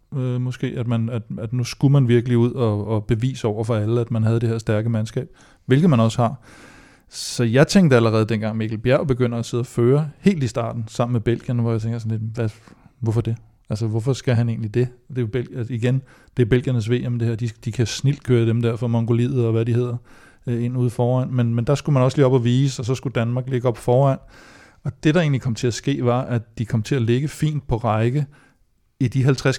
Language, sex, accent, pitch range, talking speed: Danish, male, native, 115-130 Hz, 250 wpm